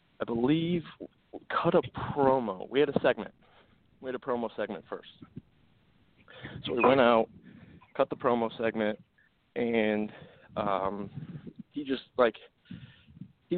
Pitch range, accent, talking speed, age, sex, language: 105-135 Hz, American, 130 wpm, 20-39, male, English